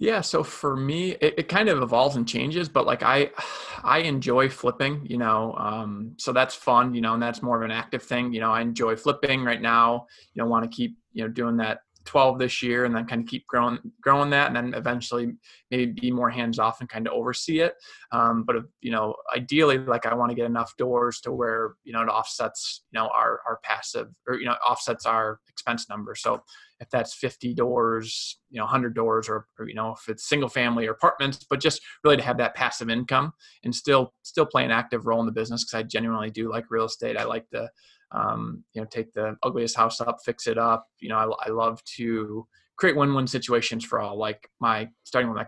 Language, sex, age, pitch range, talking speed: English, male, 20-39, 115-125 Hz, 235 wpm